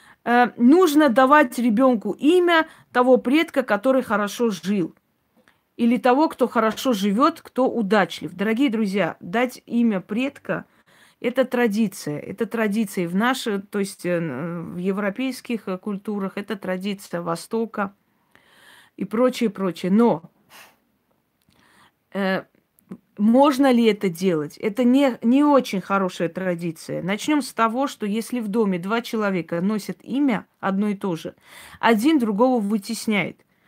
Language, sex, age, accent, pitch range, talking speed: Russian, female, 40-59, native, 200-250 Hz, 120 wpm